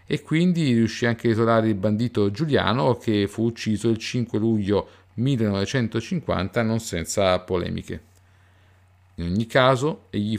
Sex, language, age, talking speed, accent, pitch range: male, Italian, 50-69, 135 wpm, native, 95-120 Hz